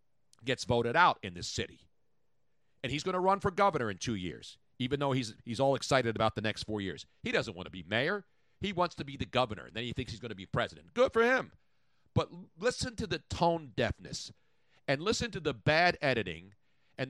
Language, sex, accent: English, male, American